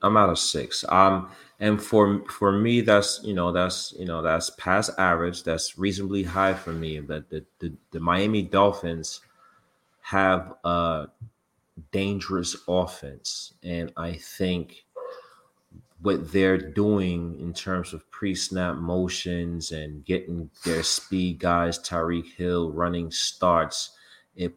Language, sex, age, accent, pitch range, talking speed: English, male, 30-49, American, 85-95 Hz, 135 wpm